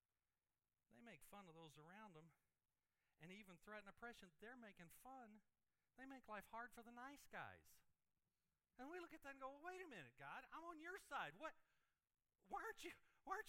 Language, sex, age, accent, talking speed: English, male, 50-69, American, 185 wpm